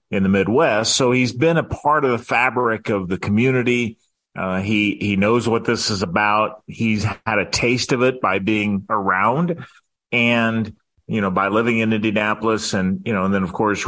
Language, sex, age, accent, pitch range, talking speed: English, male, 40-59, American, 100-120 Hz, 195 wpm